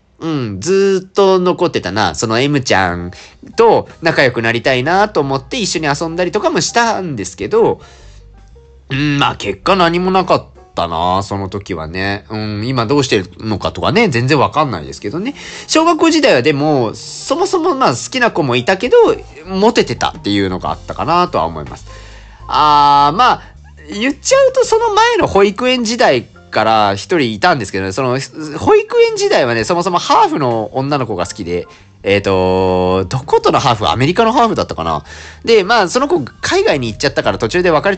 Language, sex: Japanese, male